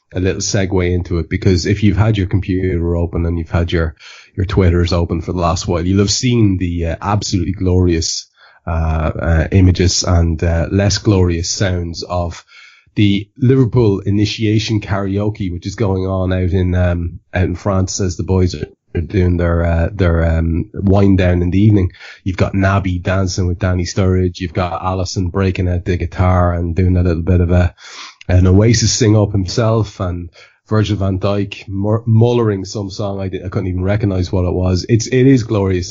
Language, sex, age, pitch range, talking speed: English, male, 20-39, 90-105 Hz, 190 wpm